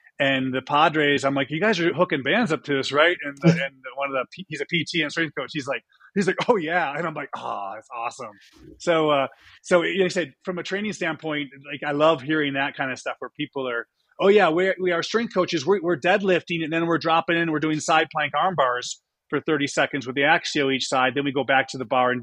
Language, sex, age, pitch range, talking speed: English, male, 30-49, 130-160 Hz, 260 wpm